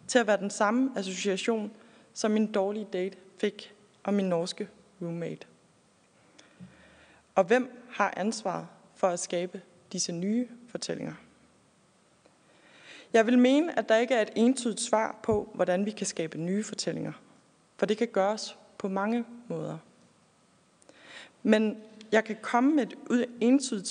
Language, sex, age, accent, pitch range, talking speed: Danish, female, 20-39, native, 195-235 Hz, 140 wpm